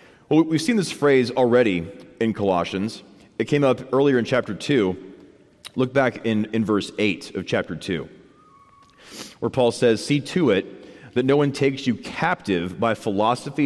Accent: American